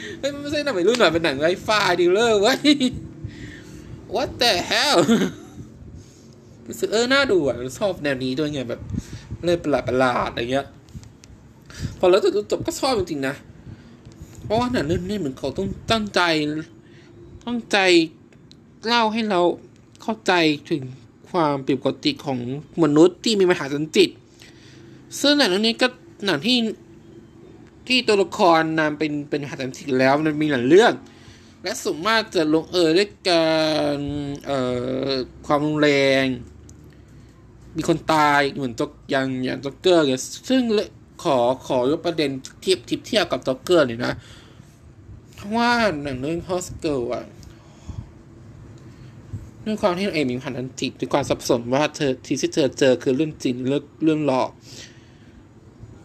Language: Thai